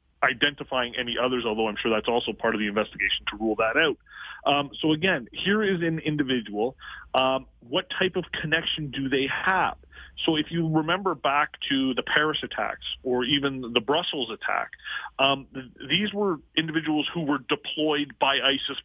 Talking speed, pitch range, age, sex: 170 wpm, 125-165 Hz, 40-59, male